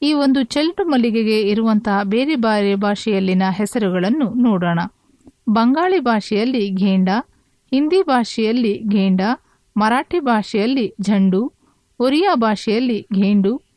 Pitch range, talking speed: 200-260 Hz, 95 wpm